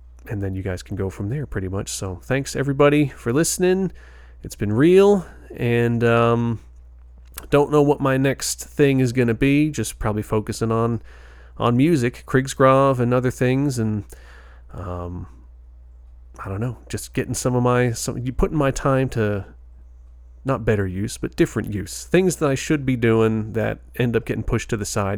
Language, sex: English, male